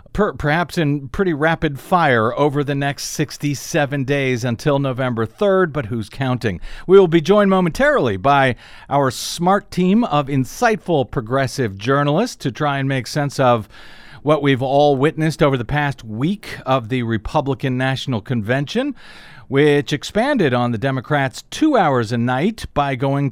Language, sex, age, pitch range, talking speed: English, male, 50-69, 130-180 Hz, 150 wpm